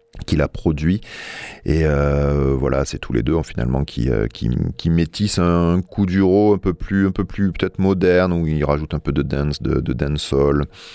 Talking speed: 195 wpm